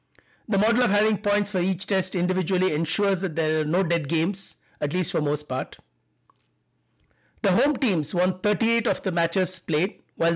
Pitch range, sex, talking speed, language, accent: 165-205 Hz, male, 180 wpm, English, Indian